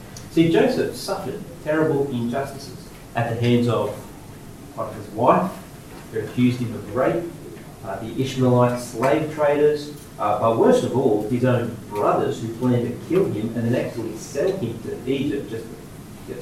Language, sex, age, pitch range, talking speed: English, male, 40-59, 115-155 Hz, 160 wpm